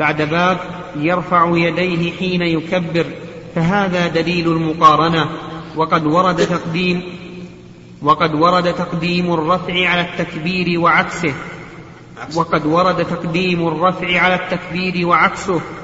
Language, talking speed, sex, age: Arabic, 95 wpm, male, 40-59